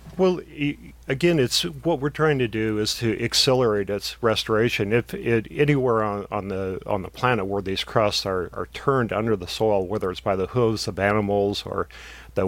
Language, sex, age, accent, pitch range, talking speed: English, male, 40-59, American, 100-120 Hz, 190 wpm